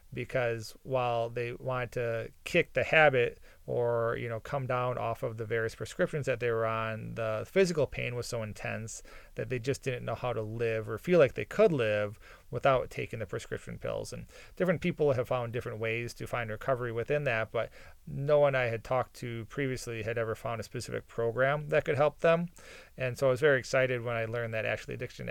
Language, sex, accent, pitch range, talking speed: English, male, American, 115-135 Hz, 210 wpm